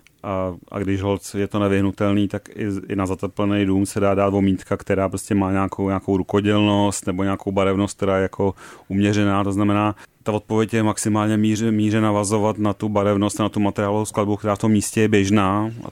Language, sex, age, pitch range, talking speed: Czech, male, 30-49, 95-105 Hz, 195 wpm